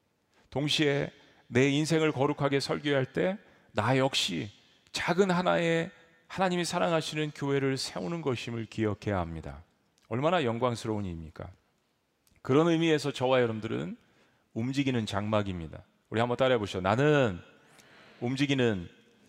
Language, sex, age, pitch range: Korean, male, 40-59, 110-150 Hz